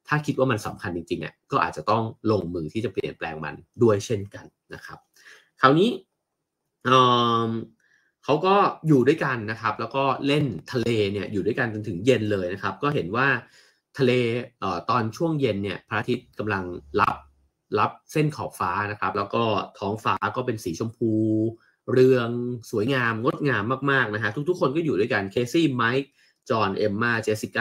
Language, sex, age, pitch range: English, male, 30-49, 105-135 Hz